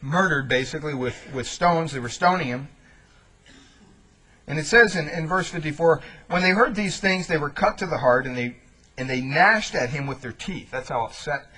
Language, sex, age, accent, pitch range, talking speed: English, male, 50-69, American, 125-175 Hz, 205 wpm